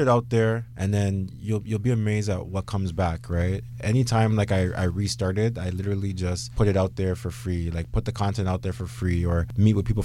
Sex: male